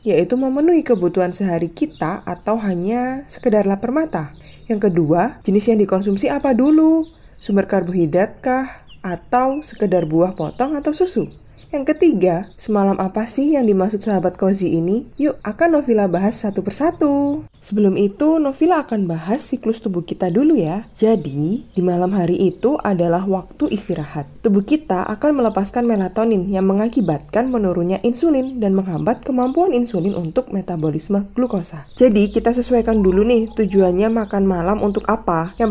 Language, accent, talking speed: Indonesian, native, 145 wpm